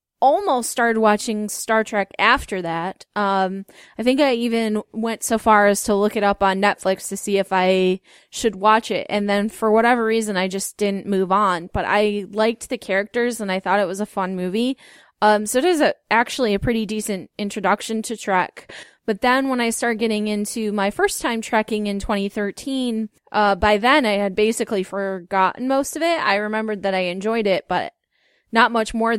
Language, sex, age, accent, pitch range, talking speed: English, female, 10-29, American, 200-235 Hz, 200 wpm